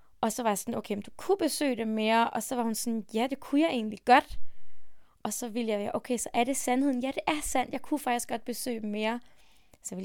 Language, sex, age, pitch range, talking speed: English, female, 20-39, 220-275 Hz, 270 wpm